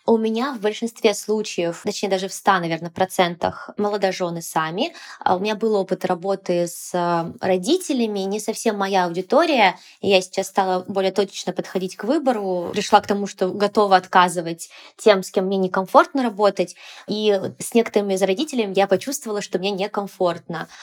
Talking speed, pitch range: 155 wpm, 185-220 Hz